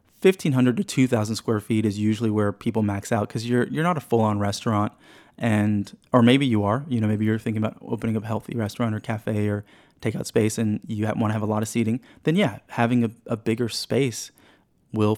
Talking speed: 230 wpm